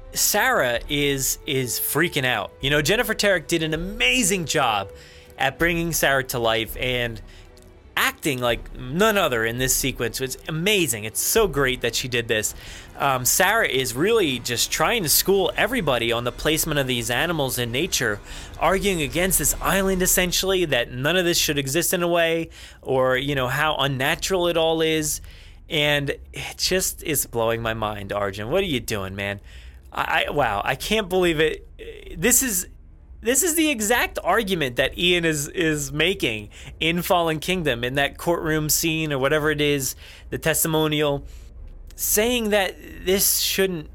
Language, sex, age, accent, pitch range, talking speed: English, male, 30-49, American, 120-185 Hz, 170 wpm